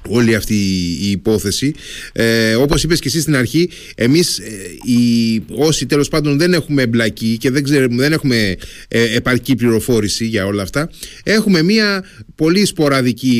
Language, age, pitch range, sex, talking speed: Greek, 30-49, 115-155 Hz, male, 135 wpm